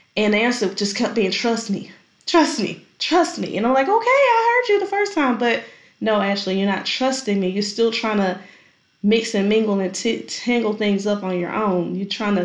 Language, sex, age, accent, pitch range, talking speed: English, female, 10-29, American, 180-220 Hz, 215 wpm